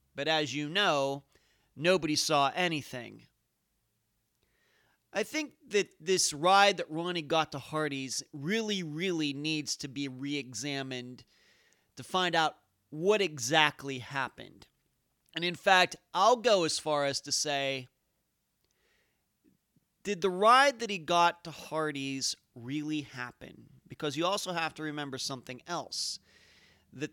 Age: 30-49